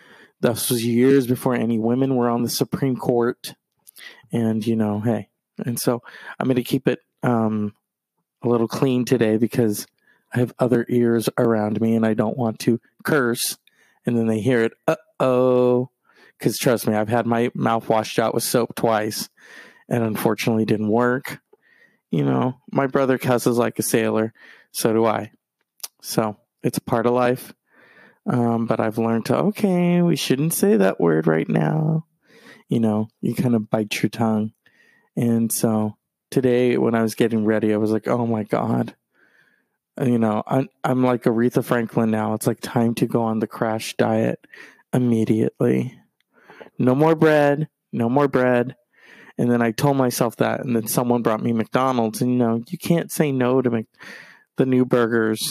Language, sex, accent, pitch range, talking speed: English, male, American, 110-130 Hz, 175 wpm